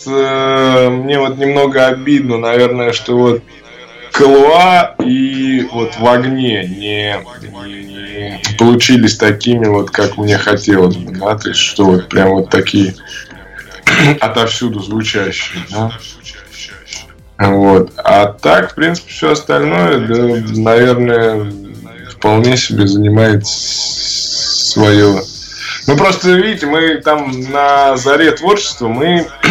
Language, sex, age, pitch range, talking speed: Russian, male, 20-39, 100-130 Hz, 110 wpm